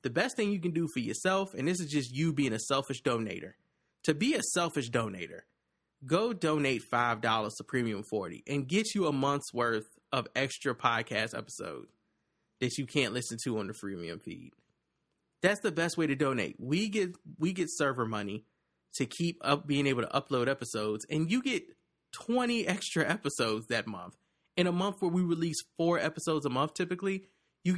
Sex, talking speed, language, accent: male, 185 wpm, English, American